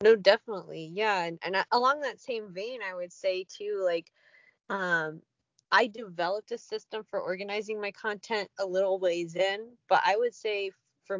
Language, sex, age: English, female, 20-39